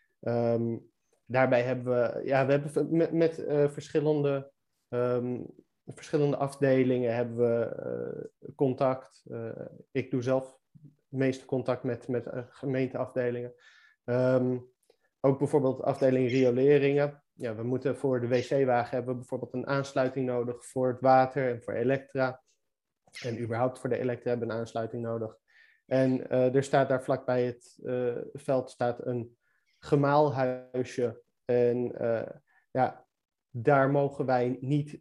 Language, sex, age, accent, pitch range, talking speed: Dutch, male, 20-39, Dutch, 120-140 Hz, 140 wpm